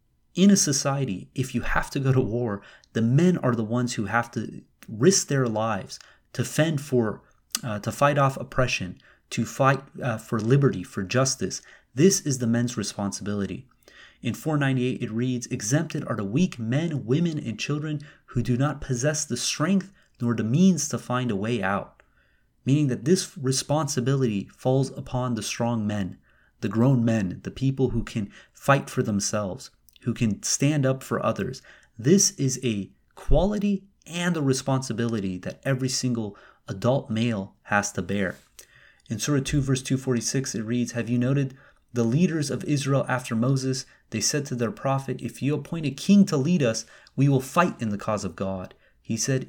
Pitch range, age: 115-145 Hz, 30-49